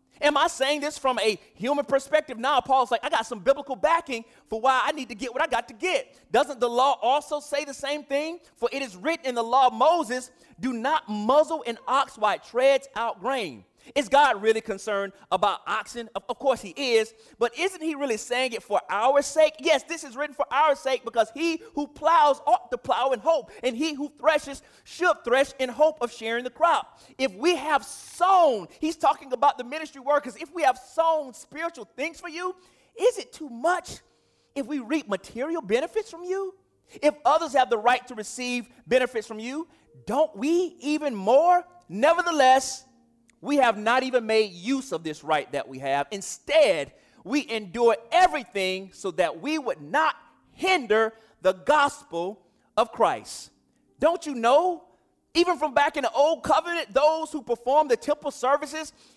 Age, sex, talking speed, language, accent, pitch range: 30-49, male, 190 wpm, English, American, 240-310 Hz